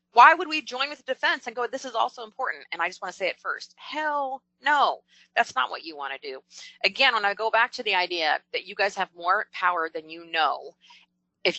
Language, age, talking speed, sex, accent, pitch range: English, 30-49, 250 wpm, female, American, 170-260 Hz